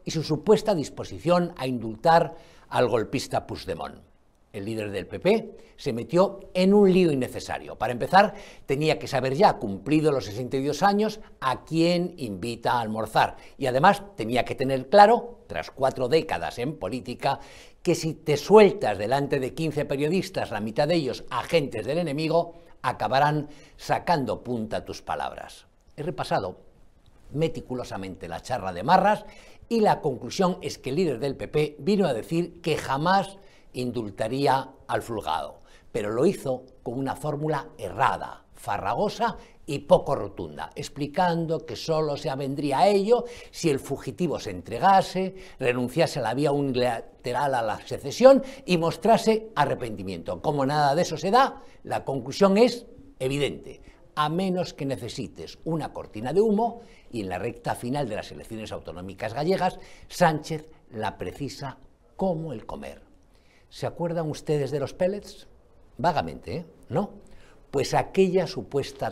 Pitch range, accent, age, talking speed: 130-185 Hz, Spanish, 60-79, 145 wpm